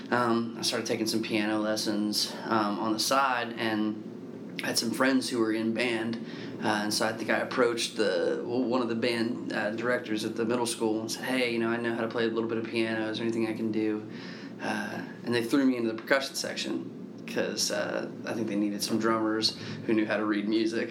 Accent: American